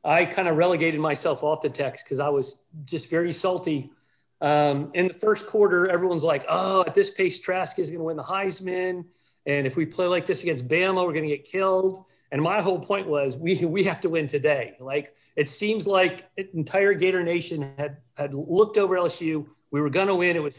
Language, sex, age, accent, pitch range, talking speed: English, male, 40-59, American, 145-185 Hz, 220 wpm